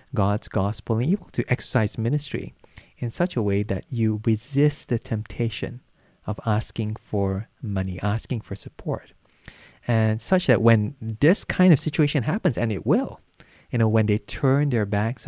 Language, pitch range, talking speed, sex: English, 100-130 Hz, 165 wpm, male